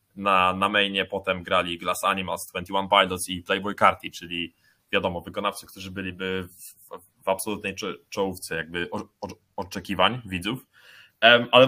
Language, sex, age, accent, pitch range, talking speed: Polish, male, 20-39, native, 100-125 Hz, 145 wpm